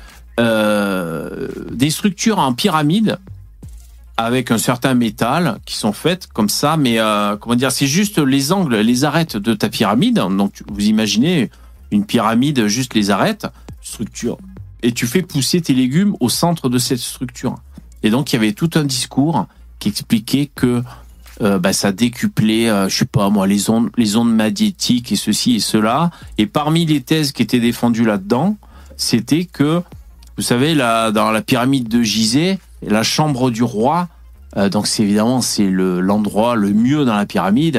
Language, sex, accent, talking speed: French, male, French, 175 wpm